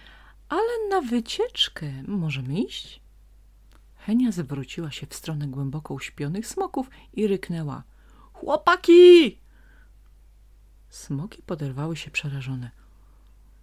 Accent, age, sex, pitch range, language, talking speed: native, 30-49, female, 145-220 Hz, Polish, 90 wpm